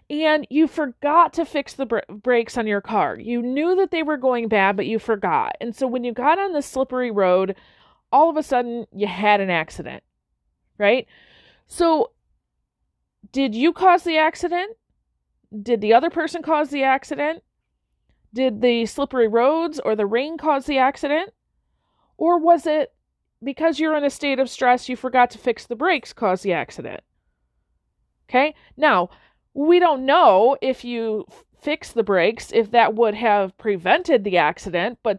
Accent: American